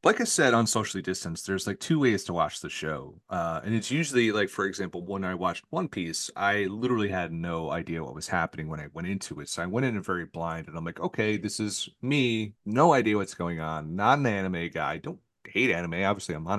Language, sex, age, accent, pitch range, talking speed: English, male, 30-49, American, 95-130 Hz, 240 wpm